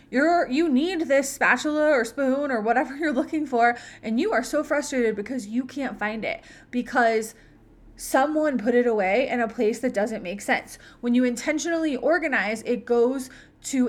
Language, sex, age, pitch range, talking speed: English, female, 20-39, 230-280 Hz, 175 wpm